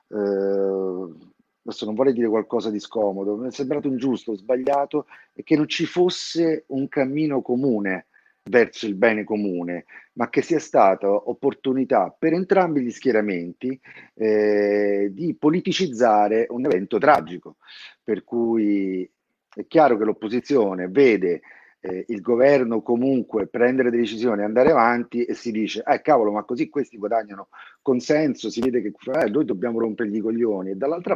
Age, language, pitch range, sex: 40-59, Italian, 100-135 Hz, male